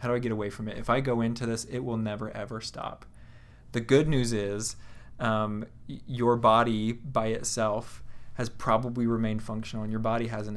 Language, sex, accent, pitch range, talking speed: English, male, American, 110-120 Hz, 200 wpm